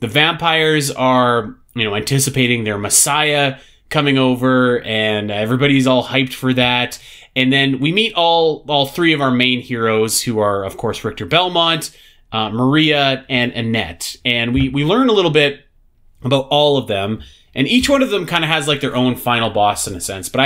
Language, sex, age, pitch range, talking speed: English, male, 30-49, 115-145 Hz, 190 wpm